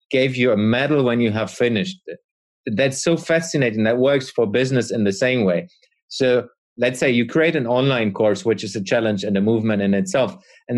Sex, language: male, English